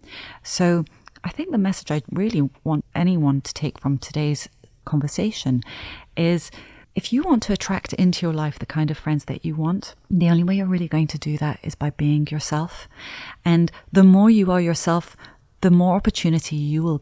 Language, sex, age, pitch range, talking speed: English, female, 30-49, 145-180 Hz, 190 wpm